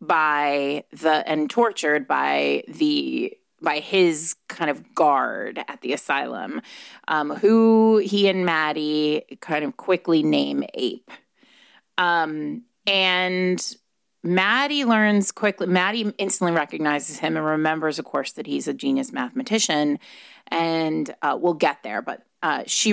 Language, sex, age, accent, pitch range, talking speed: English, female, 30-49, American, 155-215 Hz, 130 wpm